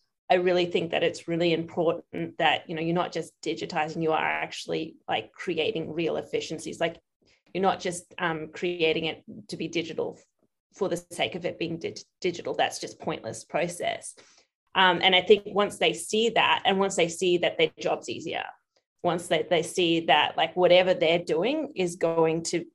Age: 30-49